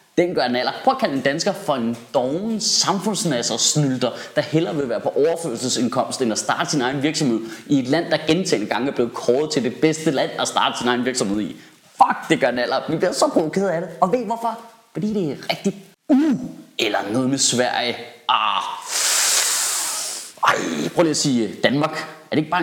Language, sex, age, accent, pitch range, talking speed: Danish, male, 30-49, native, 125-185 Hz, 215 wpm